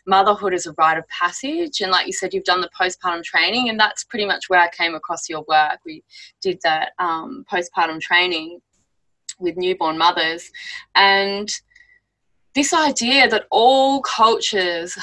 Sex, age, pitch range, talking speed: female, 20-39, 165-215 Hz, 160 wpm